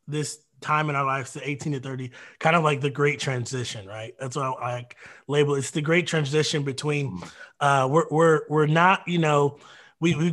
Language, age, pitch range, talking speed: English, 20-39, 145-170 Hz, 190 wpm